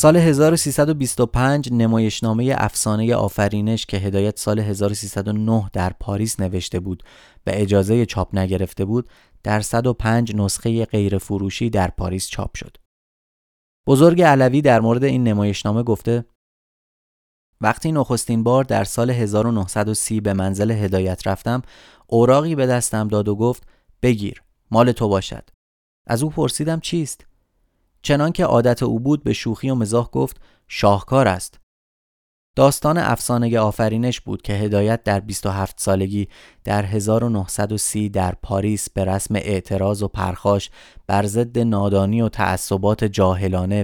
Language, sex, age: Persian, male, 30-49